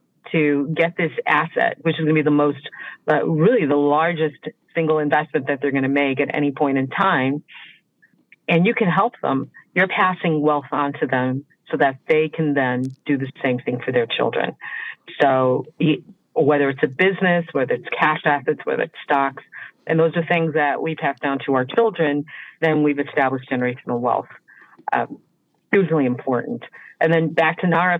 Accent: American